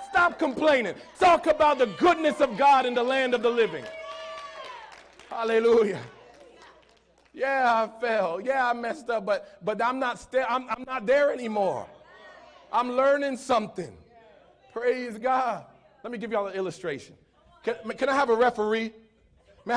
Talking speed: 145 wpm